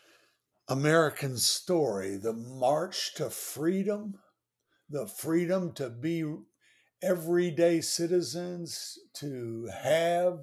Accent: American